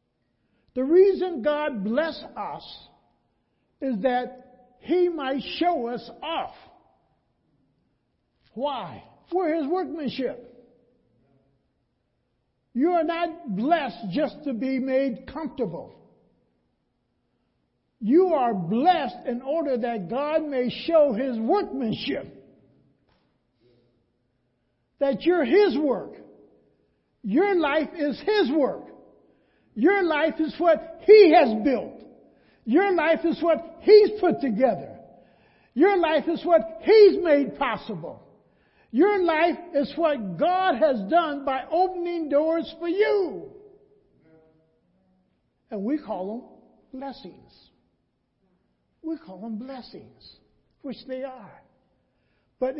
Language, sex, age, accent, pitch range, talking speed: English, male, 60-79, American, 230-330 Hz, 105 wpm